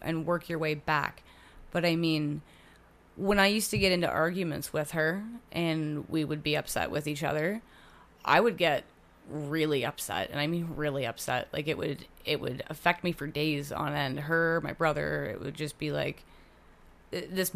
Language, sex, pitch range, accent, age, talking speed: English, female, 150-170 Hz, American, 20-39, 190 wpm